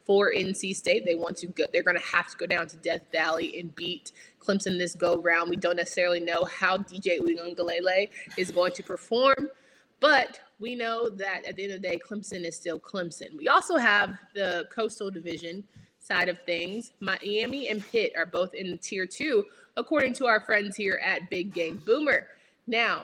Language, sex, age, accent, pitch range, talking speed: English, female, 20-39, American, 175-225 Hz, 195 wpm